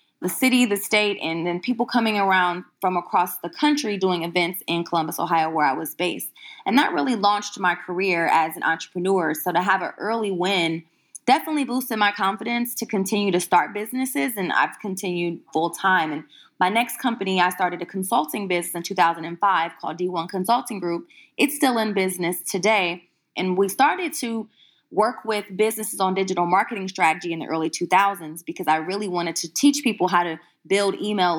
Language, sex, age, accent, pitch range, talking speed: English, female, 20-39, American, 175-210 Hz, 185 wpm